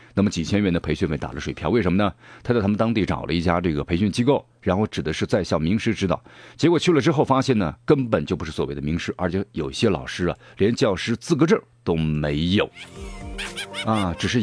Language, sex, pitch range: Chinese, male, 85-120 Hz